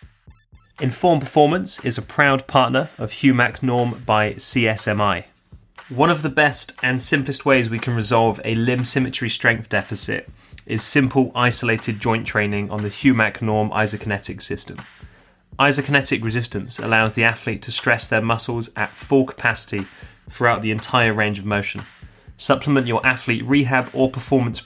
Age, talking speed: 20-39, 150 wpm